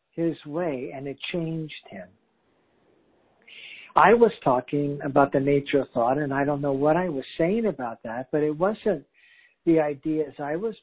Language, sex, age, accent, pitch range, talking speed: English, male, 60-79, American, 140-175 Hz, 170 wpm